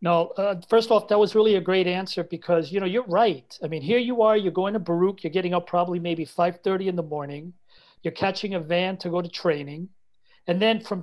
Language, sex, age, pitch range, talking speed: English, male, 40-59, 165-200 Hz, 240 wpm